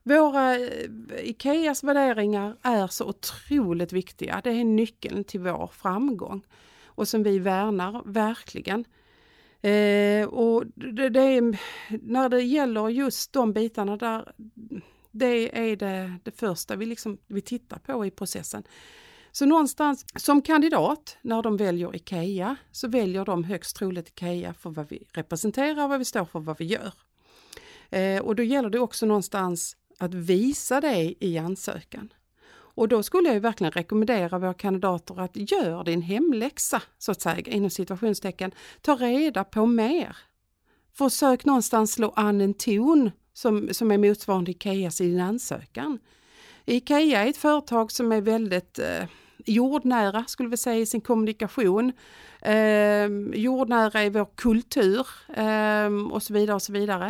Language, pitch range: Swedish, 200-255 Hz